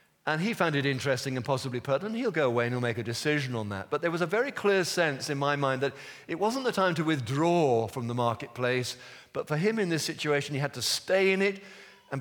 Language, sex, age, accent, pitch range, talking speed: English, male, 50-69, British, 125-175 Hz, 250 wpm